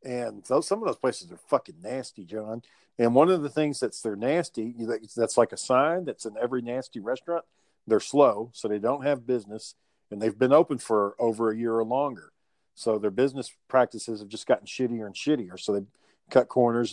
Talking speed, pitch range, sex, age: 205 wpm, 110-130 Hz, male, 50-69